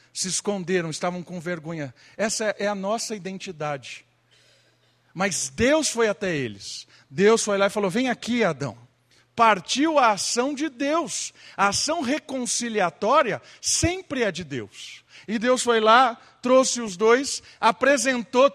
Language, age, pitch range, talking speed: Portuguese, 50-69, 190-270 Hz, 140 wpm